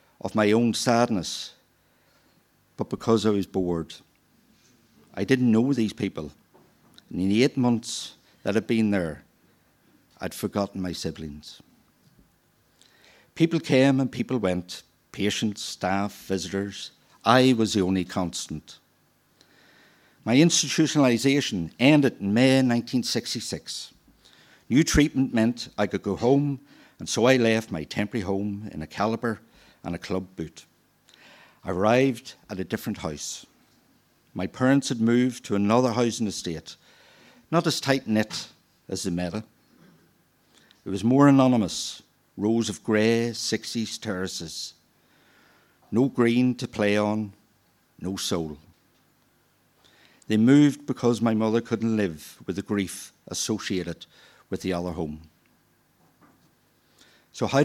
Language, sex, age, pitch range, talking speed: English, male, 60-79, 95-125 Hz, 125 wpm